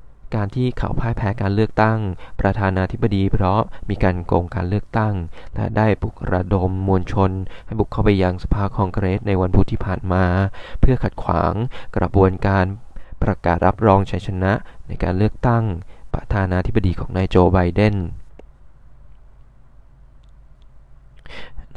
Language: Thai